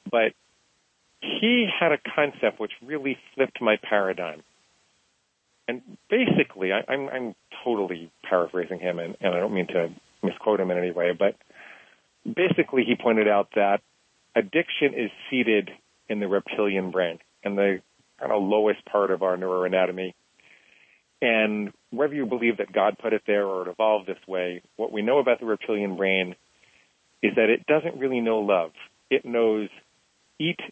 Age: 40-59